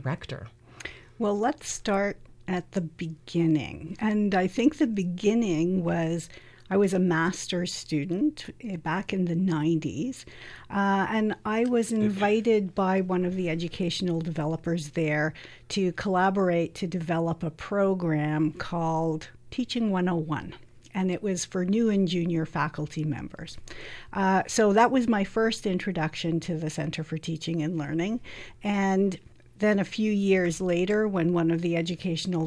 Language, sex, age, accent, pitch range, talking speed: English, female, 50-69, American, 165-195 Hz, 140 wpm